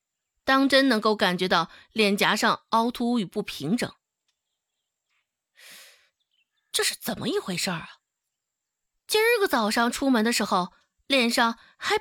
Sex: female